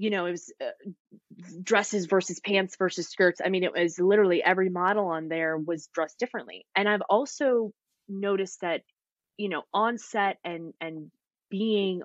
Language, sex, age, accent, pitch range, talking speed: English, female, 20-39, American, 175-220 Hz, 170 wpm